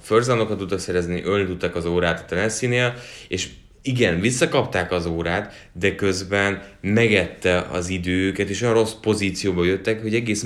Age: 30-49